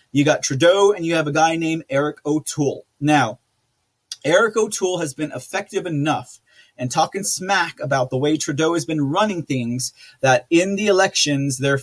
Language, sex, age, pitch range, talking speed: English, male, 30-49, 145-185 Hz, 170 wpm